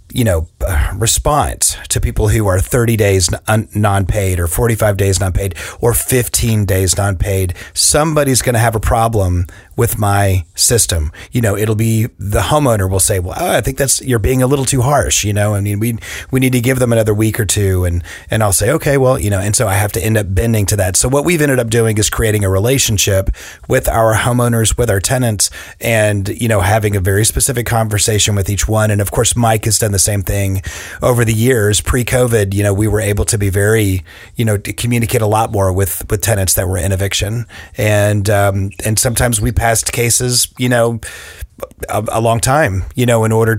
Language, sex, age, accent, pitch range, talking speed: English, male, 30-49, American, 100-120 Hz, 215 wpm